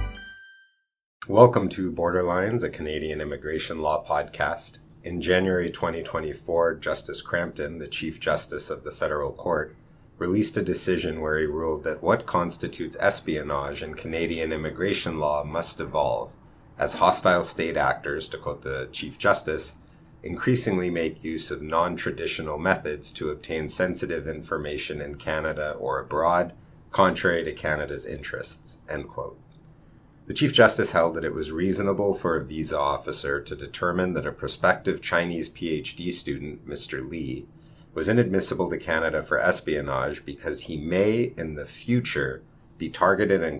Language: English